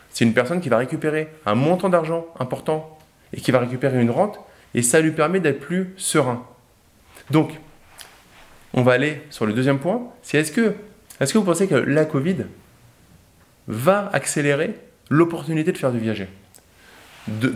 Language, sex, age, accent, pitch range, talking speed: French, male, 20-39, French, 110-155 Hz, 170 wpm